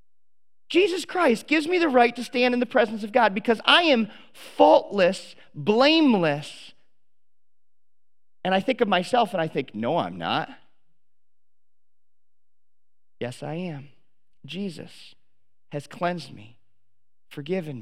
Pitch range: 145-220 Hz